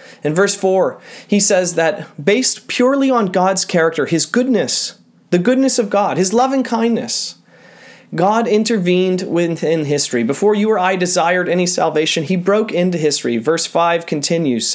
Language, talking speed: English, 160 wpm